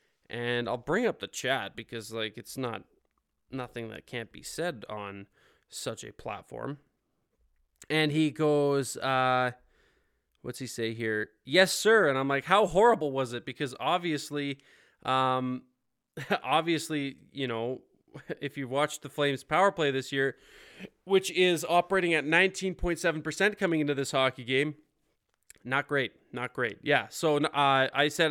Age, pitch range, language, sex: 20-39, 130-165 Hz, English, male